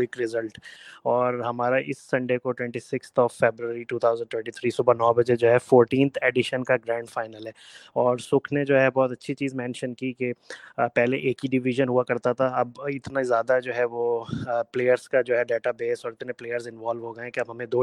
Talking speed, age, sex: 225 wpm, 20-39, male